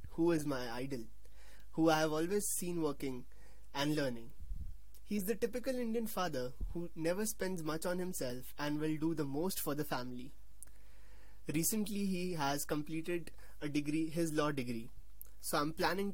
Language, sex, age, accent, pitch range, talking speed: English, male, 20-39, Indian, 130-165 Hz, 165 wpm